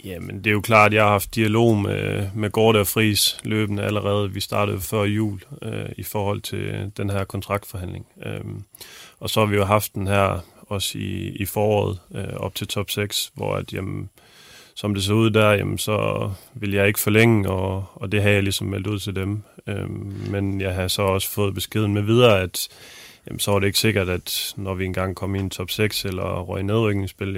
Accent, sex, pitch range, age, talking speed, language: native, male, 100-110 Hz, 30-49, 220 wpm, Danish